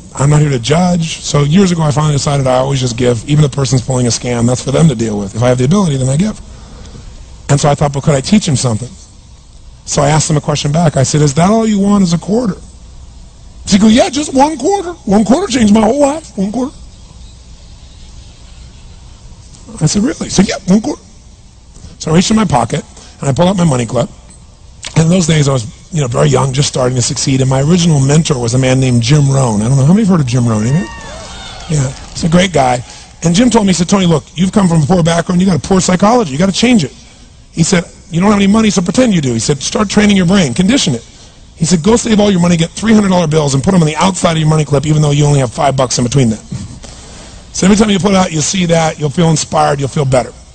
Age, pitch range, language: 30-49, 135-190 Hz, English